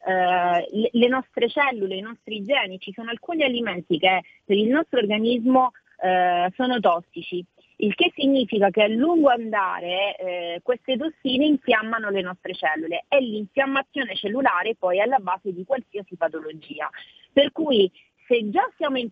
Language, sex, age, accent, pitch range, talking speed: Italian, female, 30-49, native, 190-260 Hz, 145 wpm